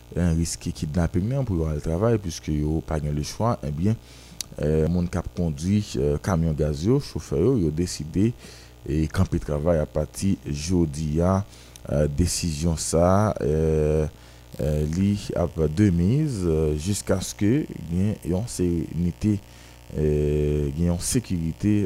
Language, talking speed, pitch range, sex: French, 125 wpm, 75-95 Hz, male